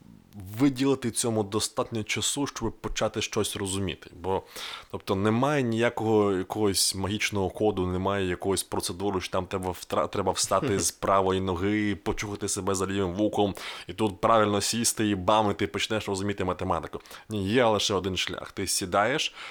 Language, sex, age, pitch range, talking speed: Ukrainian, male, 20-39, 90-110 Hz, 155 wpm